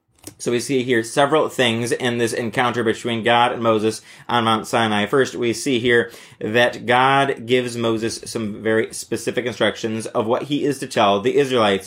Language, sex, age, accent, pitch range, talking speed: English, male, 30-49, American, 115-135 Hz, 180 wpm